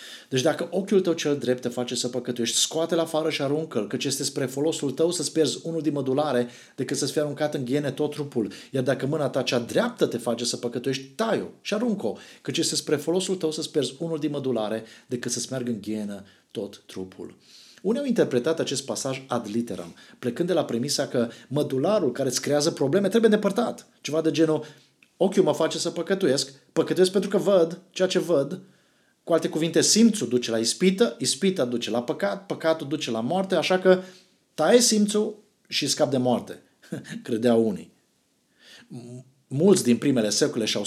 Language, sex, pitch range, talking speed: Romanian, male, 125-170 Hz, 185 wpm